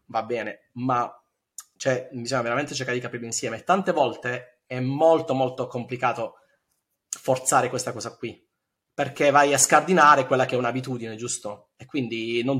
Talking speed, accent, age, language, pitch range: 150 wpm, native, 30-49, Italian, 115-140 Hz